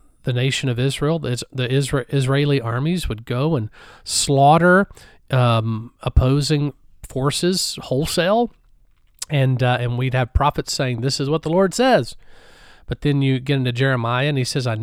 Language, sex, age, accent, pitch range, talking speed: English, male, 40-59, American, 125-150 Hz, 155 wpm